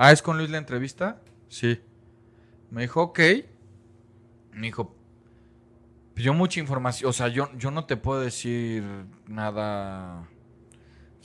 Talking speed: 135 wpm